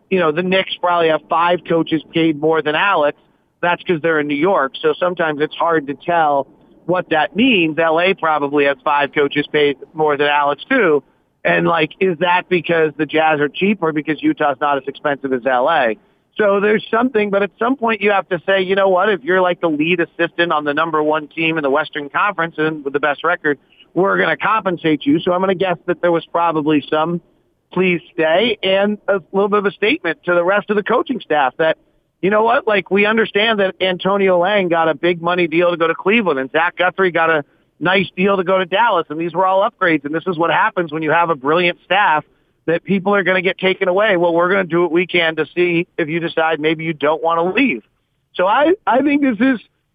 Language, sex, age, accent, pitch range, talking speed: English, male, 40-59, American, 155-200 Hz, 240 wpm